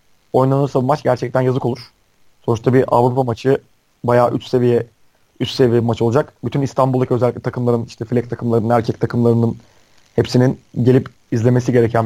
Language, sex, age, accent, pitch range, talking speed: Turkish, male, 30-49, native, 115-140 Hz, 150 wpm